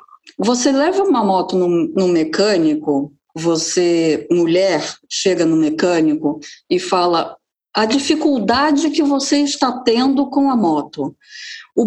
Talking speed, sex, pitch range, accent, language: 120 wpm, female, 185-295 Hz, Brazilian, Portuguese